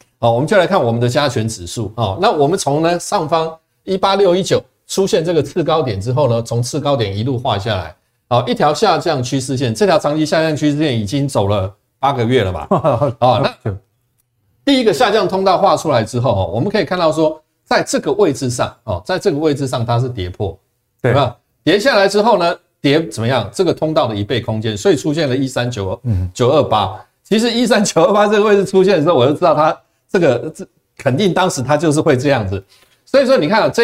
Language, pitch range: Chinese, 115-160 Hz